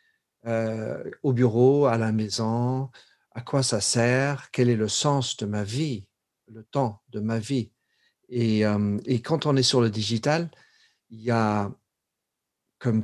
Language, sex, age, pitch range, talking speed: French, male, 50-69, 105-125 Hz, 160 wpm